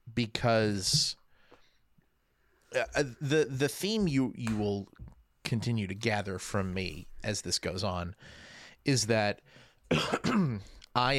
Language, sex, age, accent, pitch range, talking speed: English, male, 30-49, American, 100-130 Hz, 100 wpm